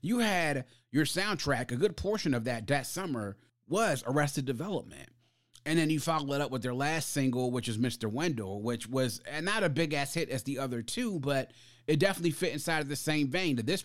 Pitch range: 125-160 Hz